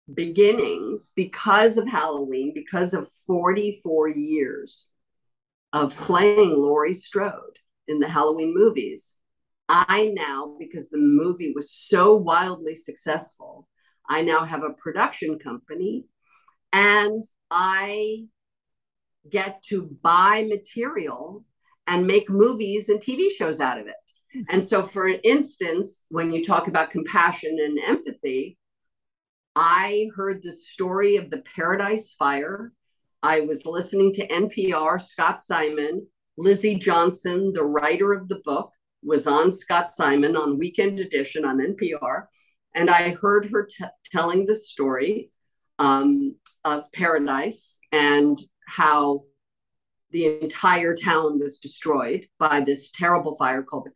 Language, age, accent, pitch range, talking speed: English, 50-69, American, 155-210 Hz, 125 wpm